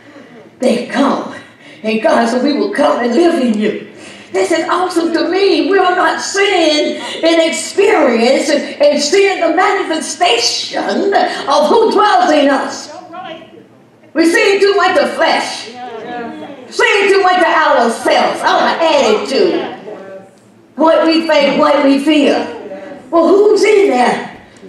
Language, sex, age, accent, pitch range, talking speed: English, female, 50-69, American, 225-330 Hz, 140 wpm